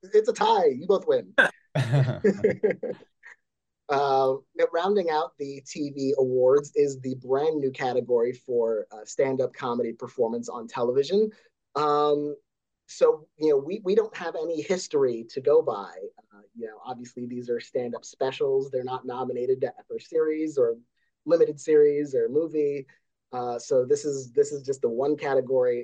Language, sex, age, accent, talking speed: English, male, 30-49, American, 155 wpm